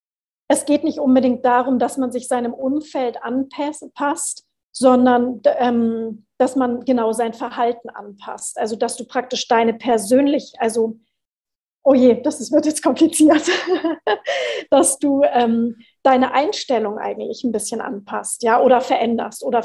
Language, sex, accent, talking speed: German, female, German, 140 wpm